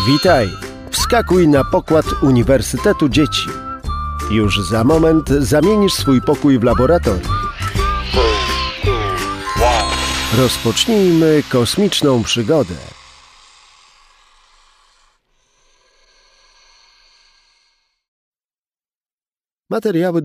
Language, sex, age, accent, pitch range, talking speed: Polish, male, 50-69, native, 110-180 Hz, 55 wpm